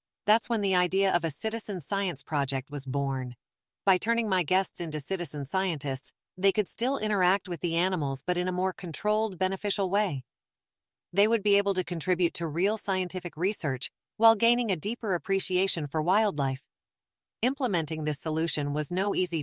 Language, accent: English, American